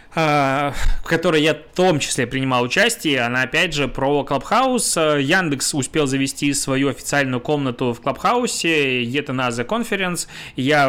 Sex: male